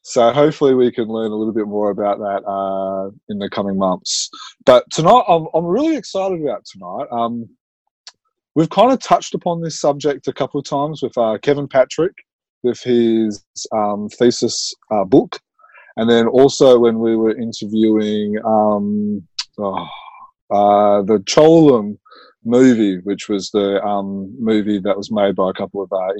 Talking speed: 165 wpm